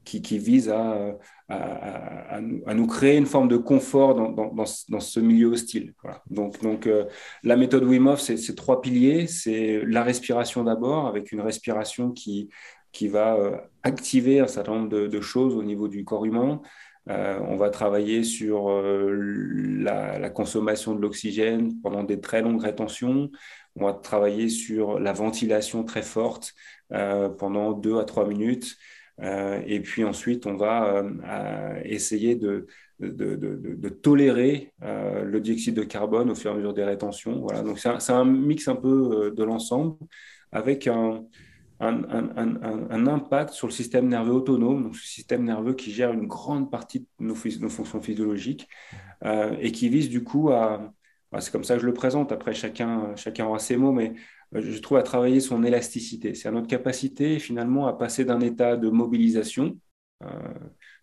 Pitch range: 105-125 Hz